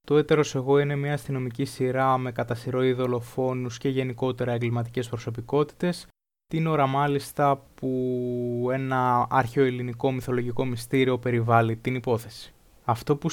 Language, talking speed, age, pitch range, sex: Greek, 120 wpm, 20-39, 120-140 Hz, male